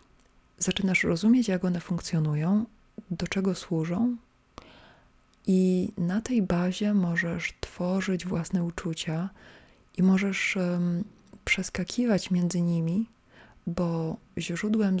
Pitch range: 175-195 Hz